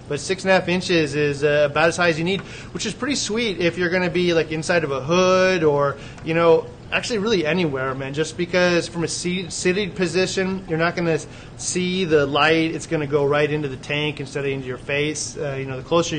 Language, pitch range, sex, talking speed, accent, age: English, 145-180 Hz, male, 240 wpm, American, 30-49